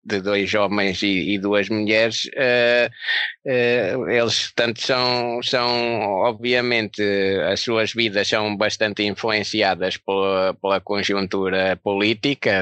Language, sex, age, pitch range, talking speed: Portuguese, male, 20-39, 100-125 Hz, 105 wpm